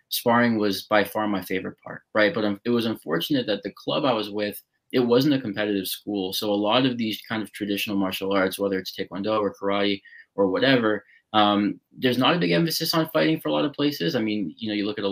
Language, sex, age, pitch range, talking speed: English, male, 20-39, 100-120 Hz, 240 wpm